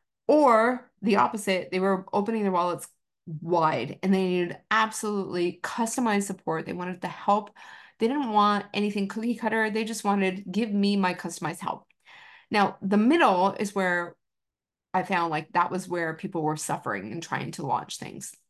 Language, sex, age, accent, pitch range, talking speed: English, female, 30-49, American, 175-220 Hz, 170 wpm